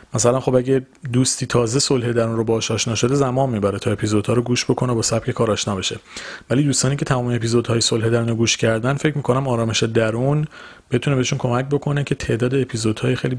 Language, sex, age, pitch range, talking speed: Persian, male, 30-49, 110-130 Hz, 205 wpm